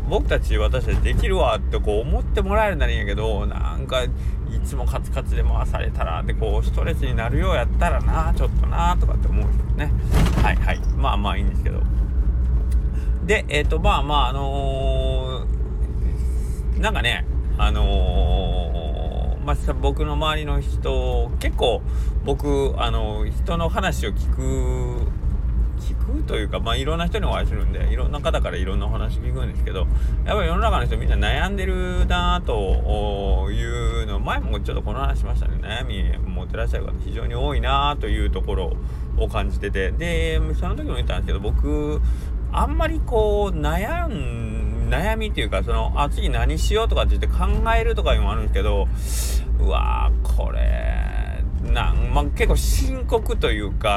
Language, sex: Japanese, male